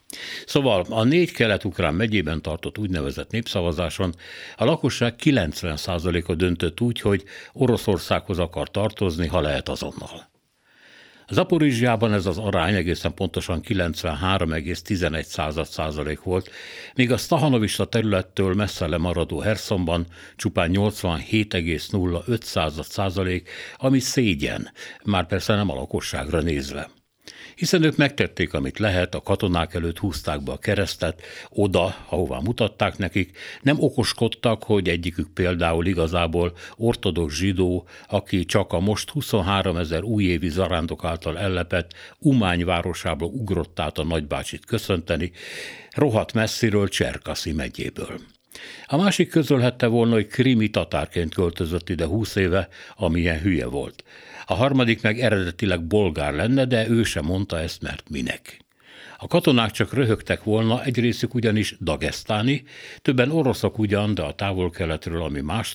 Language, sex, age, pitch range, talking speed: Hungarian, male, 60-79, 85-110 Hz, 120 wpm